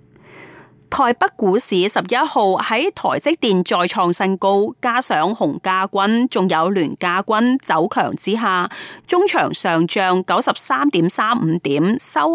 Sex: female